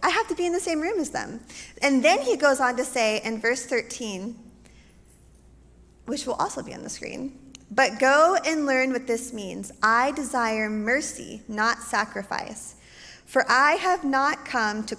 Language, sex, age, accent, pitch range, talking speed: English, female, 20-39, American, 215-275 Hz, 180 wpm